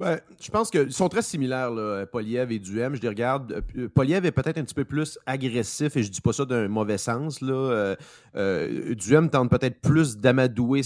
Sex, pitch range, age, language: male, 115-140 Hz, 30-49, French